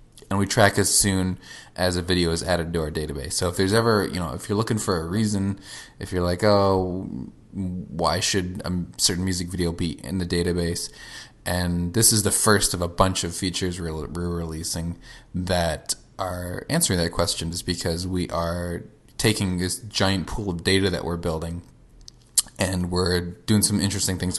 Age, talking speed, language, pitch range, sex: 20-39, 185 wpm, English, 85-100 Hz, male